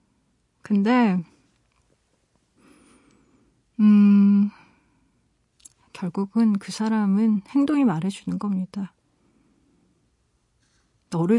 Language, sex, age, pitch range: Korean, female, 40-59, 180-235 Hz